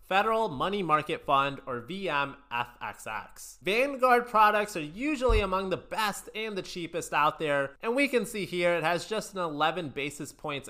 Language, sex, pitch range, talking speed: English, male, 140-205 Hz, 170 wpm